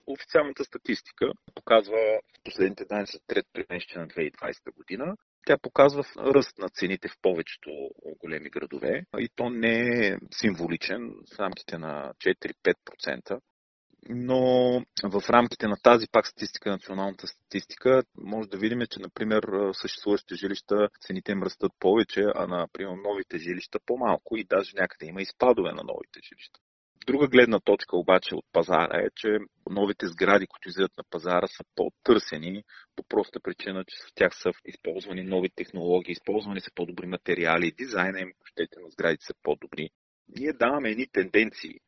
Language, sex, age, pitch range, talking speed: Bulgarian, male, 30-49, 90-110 Hz, 150 wpm